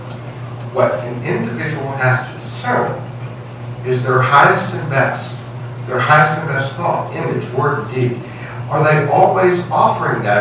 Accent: American